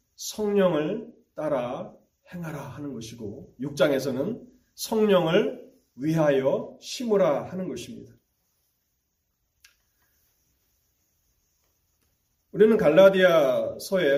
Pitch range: 140-205 Hz